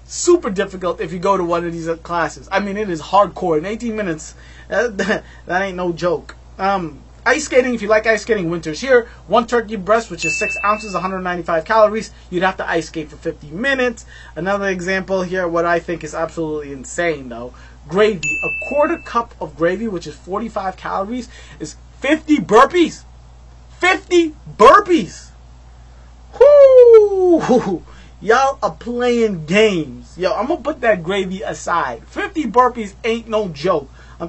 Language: English